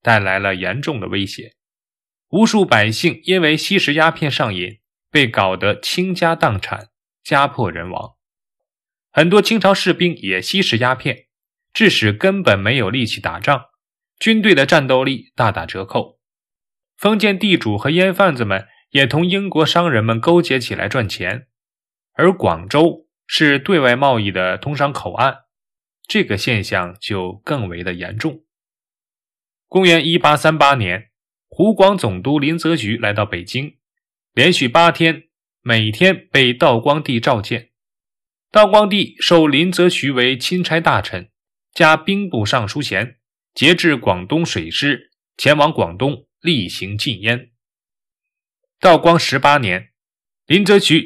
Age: 20-39